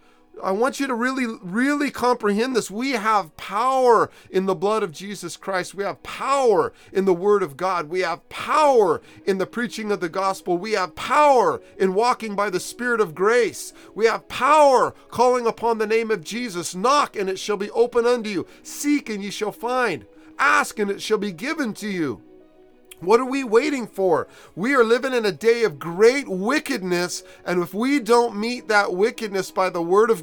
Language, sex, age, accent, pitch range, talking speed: English, male, 40-59, American, 195-245 Hz, 195 wpm